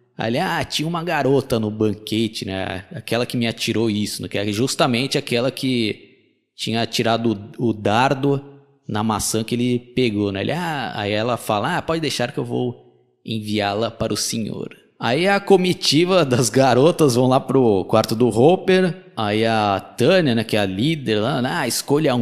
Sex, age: male, 20-39